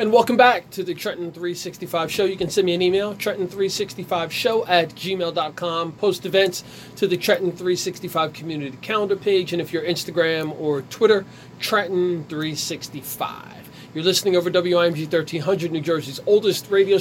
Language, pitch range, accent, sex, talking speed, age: English, 145-180 Hz, American, male, 150 wpm, 30-49